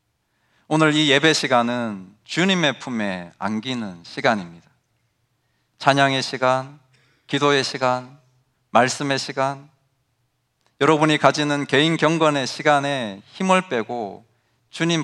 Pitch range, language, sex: 110-140 Hz, Korean, male